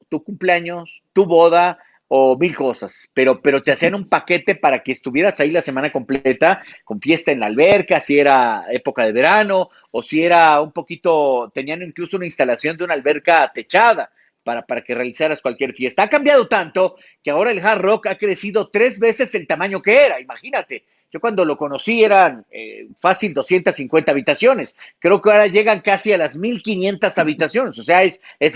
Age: 50-69